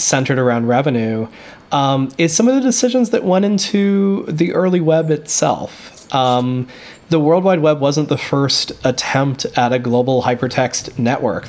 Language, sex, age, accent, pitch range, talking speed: English, male, 20-39, American, 125-150 Hz, 155 wpm